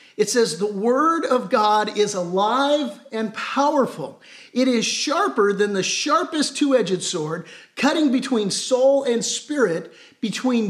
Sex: male